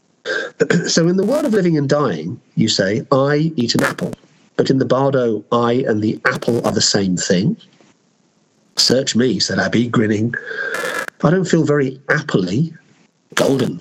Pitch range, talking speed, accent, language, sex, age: 120-175 Hz, 160 wpm, British, English, male, 50-69